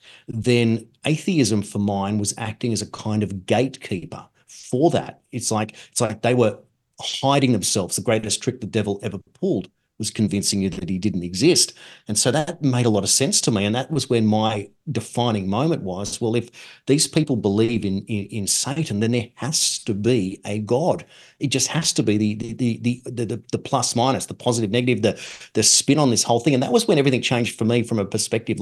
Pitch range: 100-120 Hz